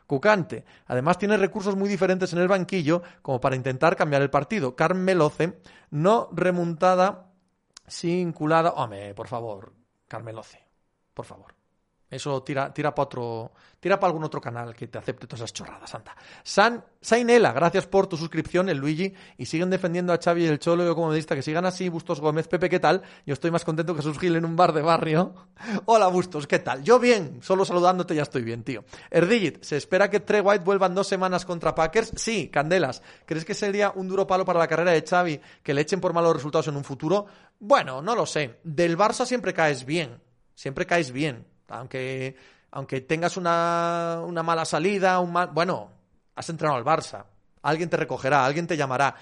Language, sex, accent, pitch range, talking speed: Spanish, male, Spanish, 140-185 Hz, 195 wpm